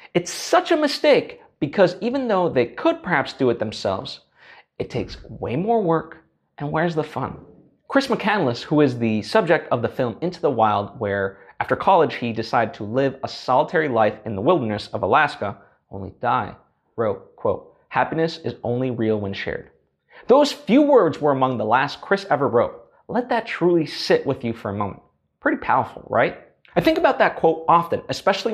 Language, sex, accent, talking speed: English, male, American, 185 wpm